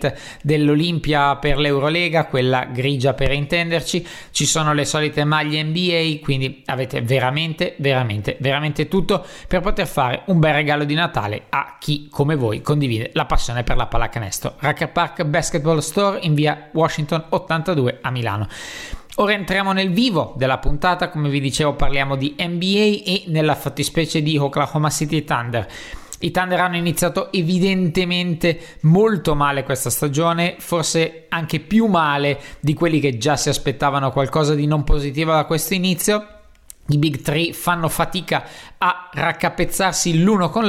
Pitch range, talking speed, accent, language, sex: 135-165 Hz, 150 wpm, native, Italian, male